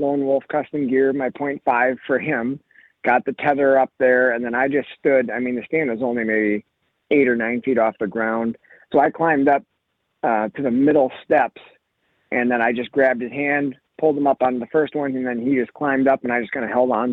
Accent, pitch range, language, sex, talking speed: American, 125-155 Hz, English, male, 240 wpm